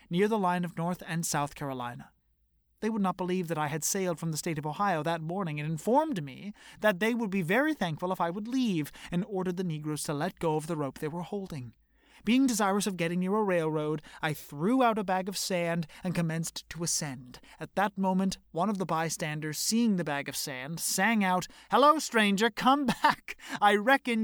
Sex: male